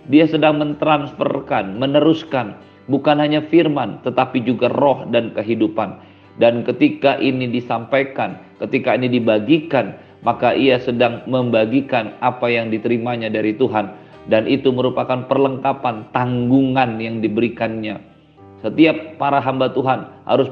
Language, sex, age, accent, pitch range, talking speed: Indonesian, male, 50-69, native, 115-140 Hz, 115 wpm